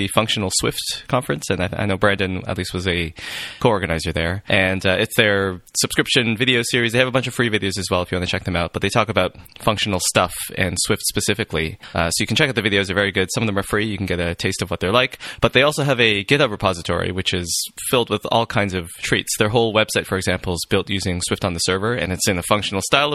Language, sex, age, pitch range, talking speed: English, male, 20-39, 90-115 Hz, 270 wpm